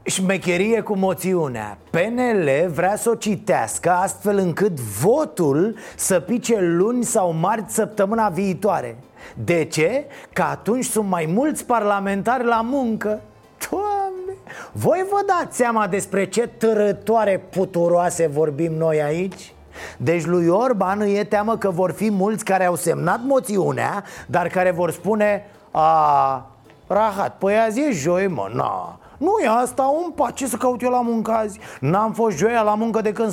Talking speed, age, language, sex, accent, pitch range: 150 wpm, 30-49, Romanian, male, native, 165-220 Hz